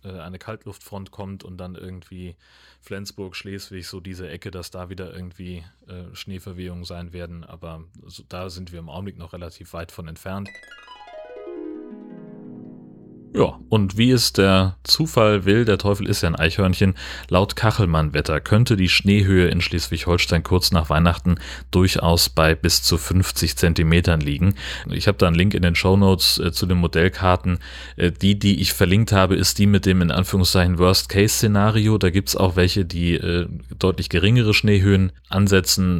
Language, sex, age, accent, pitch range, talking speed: German, male, 30-49, German, 85-95 Hz, 165 wpm